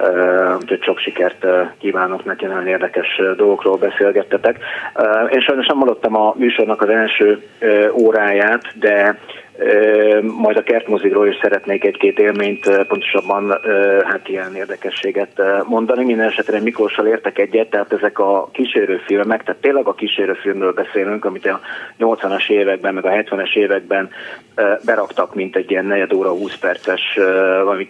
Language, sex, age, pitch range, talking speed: Hungarian, male, 30-49, 95-110 Hz, 140 wpm